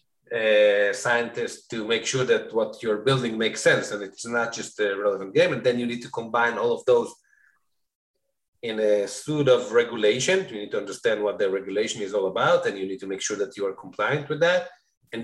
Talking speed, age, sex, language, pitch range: 215 wpm, 30-49, male, English, 115-190 Hz